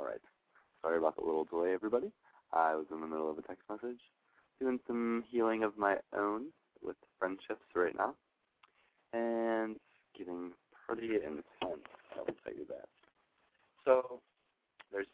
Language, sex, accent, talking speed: English, male, American, 145 wpm